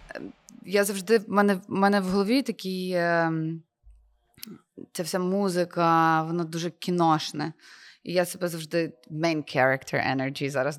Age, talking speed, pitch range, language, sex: 20-39, 130 wpm, 155-190 Hz, Ukrainian, female